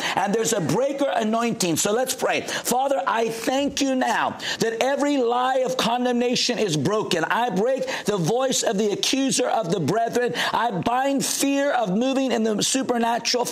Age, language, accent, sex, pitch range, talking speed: 50-69, English, American, male, 230-265 Hz, 170 wpm